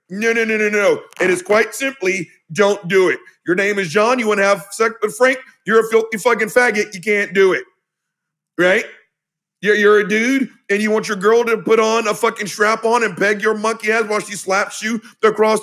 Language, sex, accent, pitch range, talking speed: English, male, American, 190-235 Hz, 225 wpm